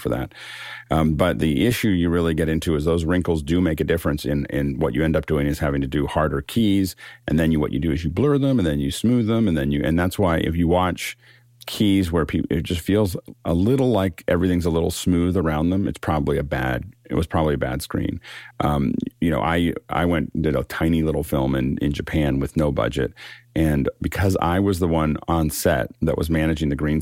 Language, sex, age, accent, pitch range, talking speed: English, male, 40-59, American, 75-90 Hz, 245 wpm